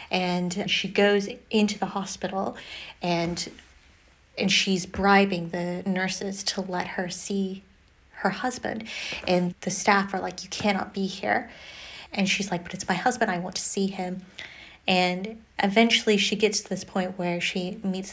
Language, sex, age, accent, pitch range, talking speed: English, female, 30-49, American, 180-200 Hz, 160 wpm